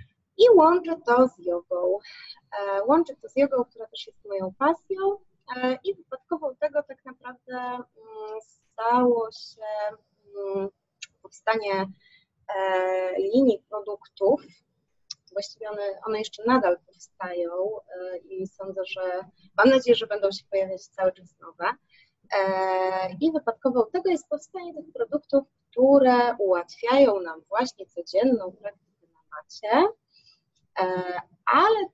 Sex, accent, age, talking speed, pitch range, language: female, native, 20-39, 120 wpm, 185-260 Hz, Polish